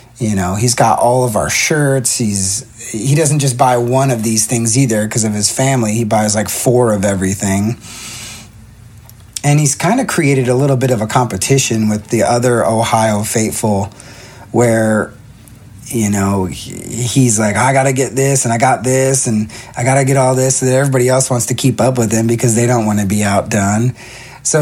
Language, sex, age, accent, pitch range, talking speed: English, male, 30-49, American, 110-125 Hz, 200 wpm